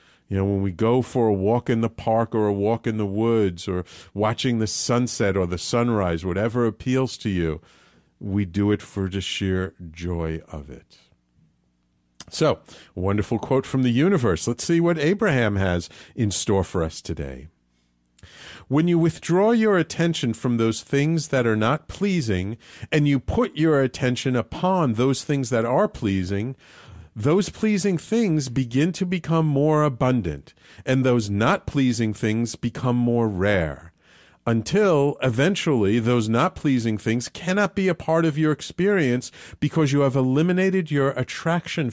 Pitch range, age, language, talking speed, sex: 100-145 Hz, 50-69, English, 160 wpm, male